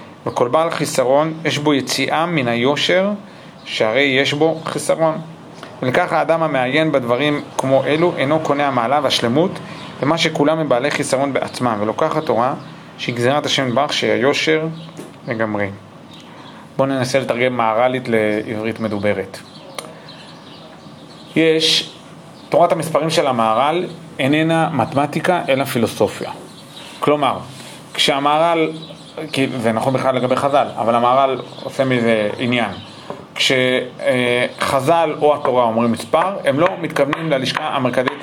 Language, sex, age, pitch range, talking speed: Hebrew, male, 40-59, 130-160 Hz, 115 wpm